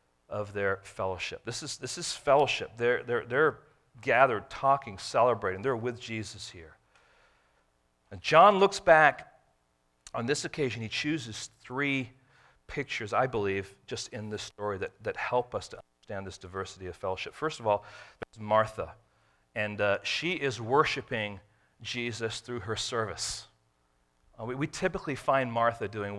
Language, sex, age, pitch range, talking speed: English, male, 40-59, 100-150 Hz, 150 wpm